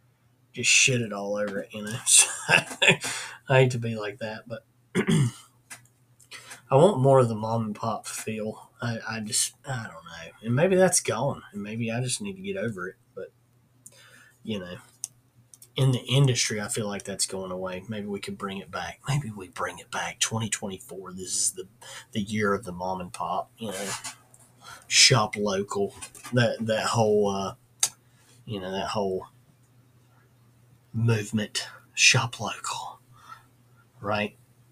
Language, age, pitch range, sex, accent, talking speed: English, 30-49, 110-125 Hz, male, American, 165 wpm